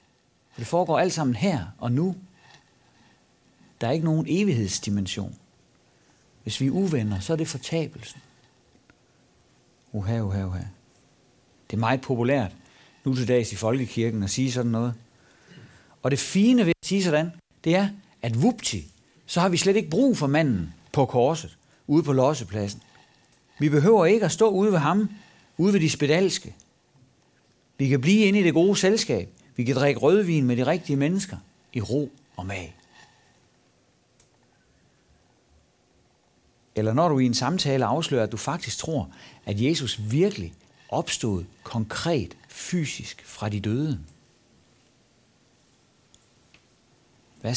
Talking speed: 140 wpm